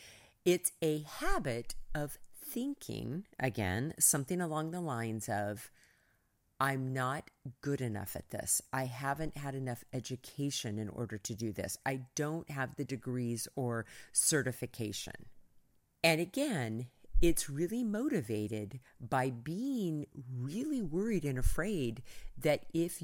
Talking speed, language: 120 wpm, English